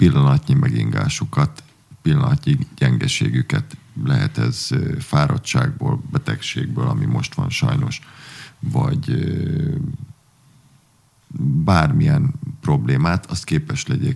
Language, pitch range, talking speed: Hungarian, 135-145 Hz, 85 wpm